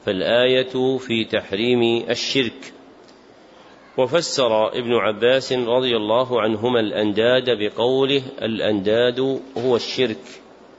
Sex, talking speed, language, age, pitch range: male, 85 wpm, Arabic, 40-59, 115-135 Hz